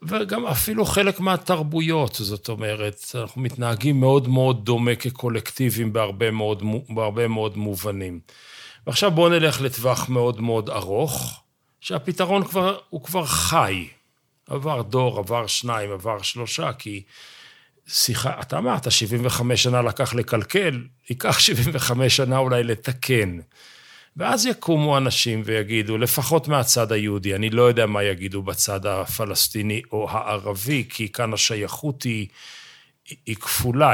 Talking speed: 125 wpm